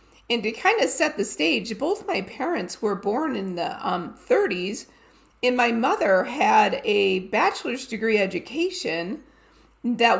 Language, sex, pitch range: English, female, 195-295 Hz